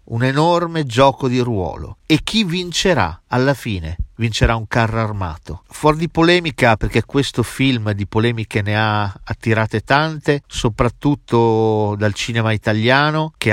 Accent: native